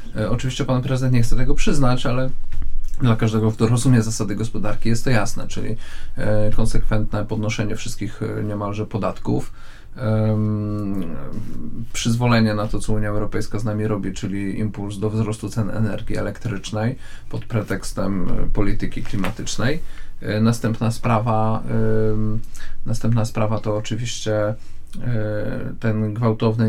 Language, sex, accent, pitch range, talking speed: Polish, male, native, 105-115 Hz, 115 wpm